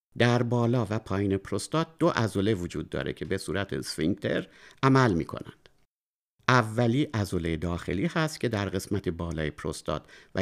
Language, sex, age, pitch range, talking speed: Persian, male, 50-69, 90-130 Hz, 150 wpm